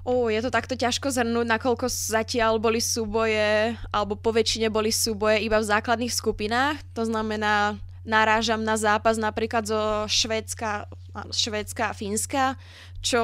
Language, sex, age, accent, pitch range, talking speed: Czech, female, 20-39, native, 195-235 Hz, 135 wpm